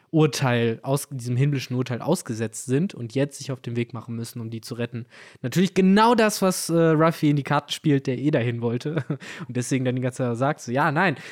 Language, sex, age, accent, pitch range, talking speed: German, male, 20-39, German, 120-150 Hz, 230 wpm